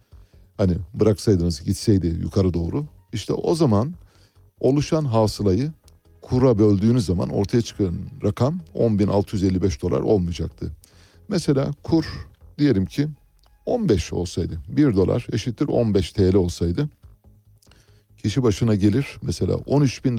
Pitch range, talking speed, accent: 90-120 Hz, 105 wpm, native